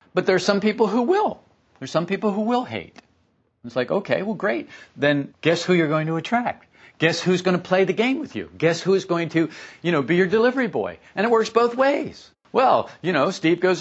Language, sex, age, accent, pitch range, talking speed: English, male, 50-69, American, 130-210 Hz, 240 wpm